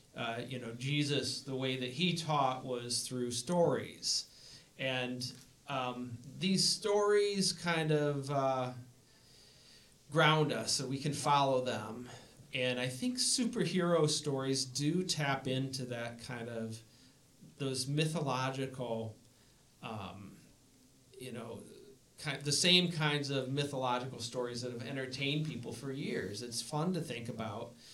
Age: 40-59